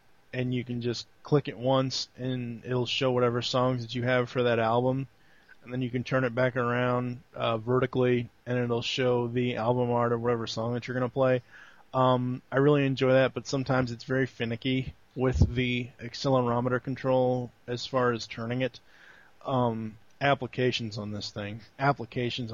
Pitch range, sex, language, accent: 115-130 Hz, male, English, American